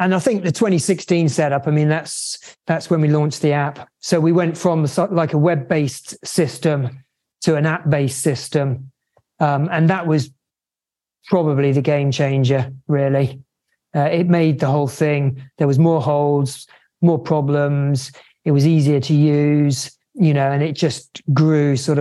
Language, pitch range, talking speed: English, 140-170 Hz, 165 wpm